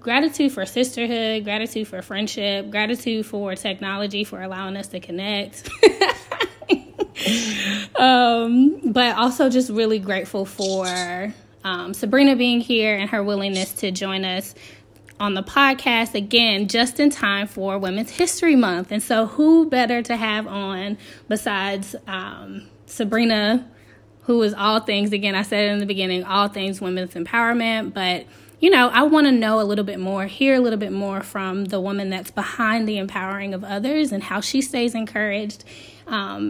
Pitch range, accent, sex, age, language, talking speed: 195-245 Hz, American, female, 20-39, English, 160 wpm